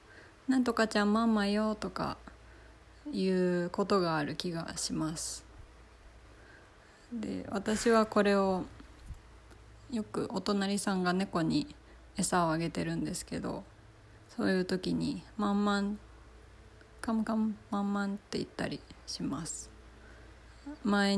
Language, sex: Japanese, female